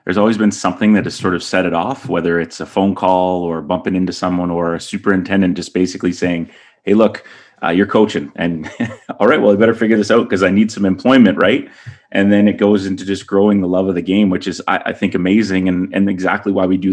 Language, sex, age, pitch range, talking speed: English, male, 30-49, 90-100 Hz, 250 wpm